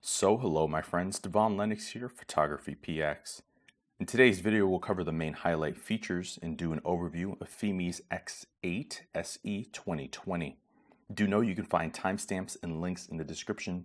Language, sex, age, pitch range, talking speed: English, male, 30-49, 80-110 Hz, 165 wpm